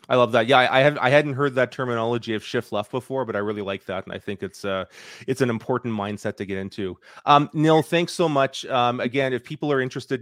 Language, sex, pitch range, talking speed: English, male, 115-135 Hz, 255 wpm